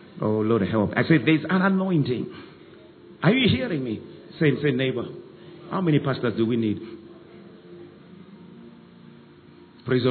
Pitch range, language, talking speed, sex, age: 105-165 Hz, English, 135 wpm, male, 50-69